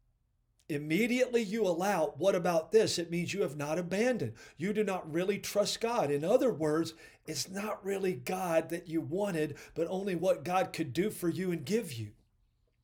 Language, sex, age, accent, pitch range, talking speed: English, male, 50-69, American, 140-195 Hz, 180 wpm